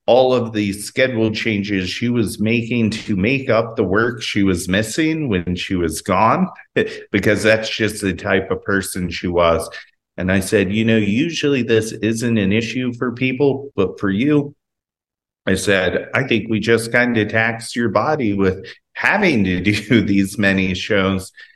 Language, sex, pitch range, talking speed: English, male, 105-130 Hz, 175 wpm